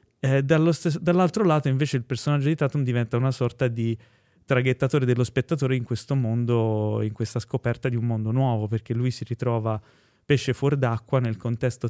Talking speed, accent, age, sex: 180 wpm, native, 20-39, male